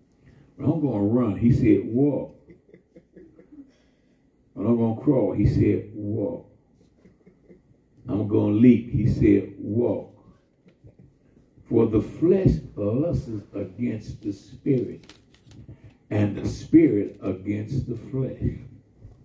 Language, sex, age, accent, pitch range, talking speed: English, male, 60-79, American, 110-140 Hz, 115 wpm